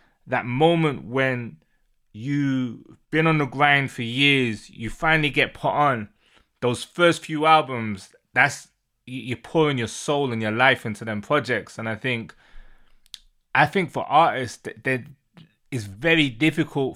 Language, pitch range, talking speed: English, 120-160 Hz, 145 wpm